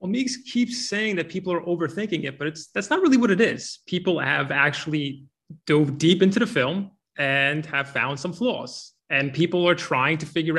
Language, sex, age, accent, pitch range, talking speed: English, male, 20-39, American, 155-195 Hz, 205 wpm